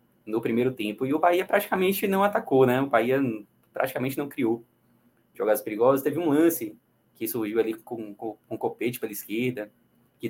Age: 20-39